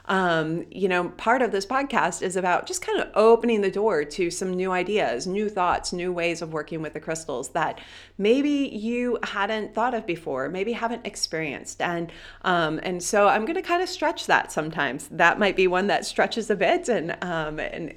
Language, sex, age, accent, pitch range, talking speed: English, female, 30-49, American, 160-215 Hz, 200 wpm